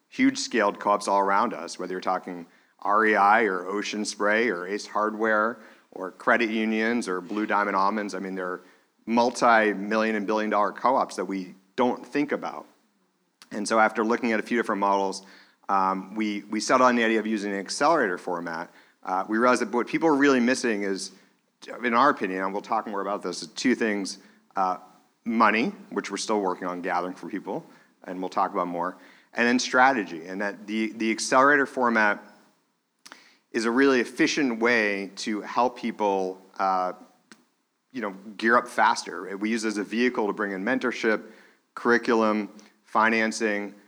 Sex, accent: male, American